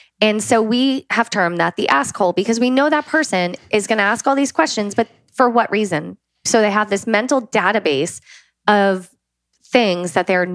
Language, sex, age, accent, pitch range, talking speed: English, female, 20-39, American, 185-240 Hz, 195 wpm